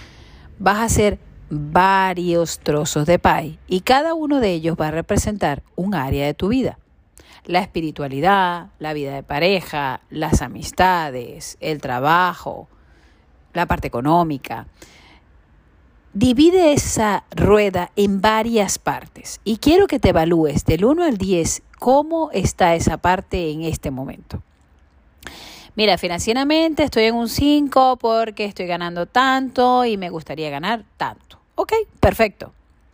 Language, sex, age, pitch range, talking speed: Spanish, female, 40-59, 155-225 Hz, 130 wpm